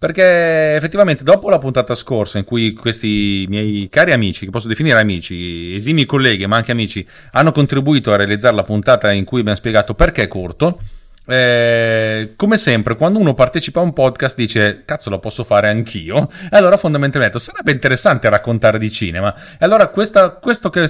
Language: Italian